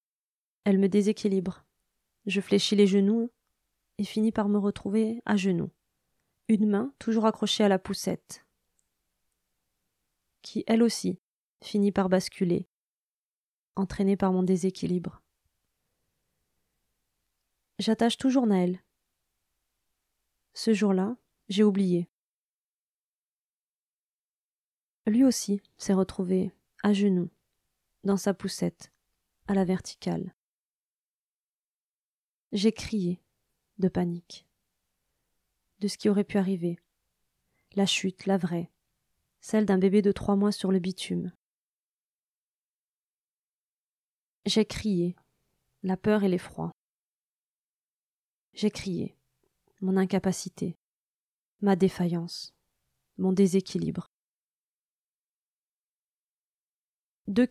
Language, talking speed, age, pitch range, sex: French, 90 wpm, 20-39, 180-205 Hz, female